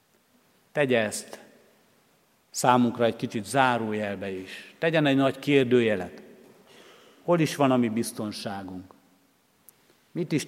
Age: 50-69